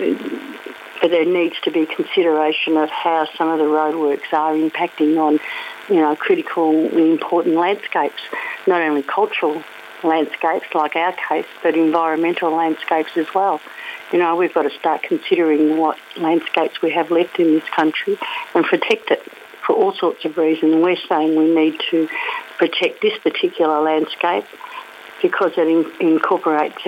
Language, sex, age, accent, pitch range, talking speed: English, female, 50-69, Australian, 160-190 Hz, 150 wpm